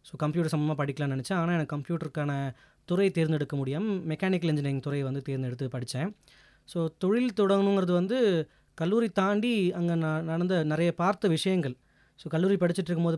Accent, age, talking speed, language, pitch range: native, 20-39, 150 wpm, Tamil, 145-180 Hz